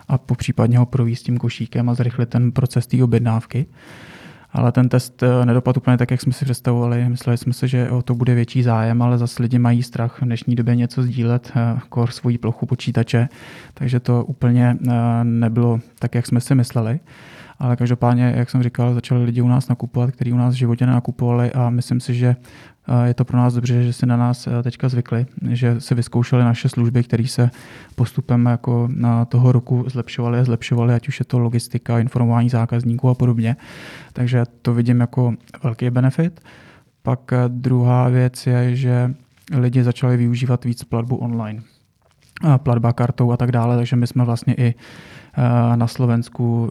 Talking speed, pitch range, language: 175 wpm, 120-125 Hz, Czech